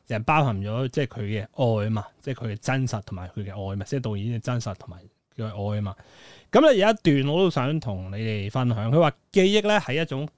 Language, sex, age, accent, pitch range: Chinese, male, 30-49, native, 105-150 Hz